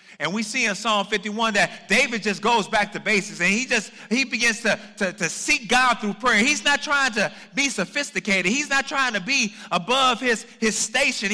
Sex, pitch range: male, 180-225 Hz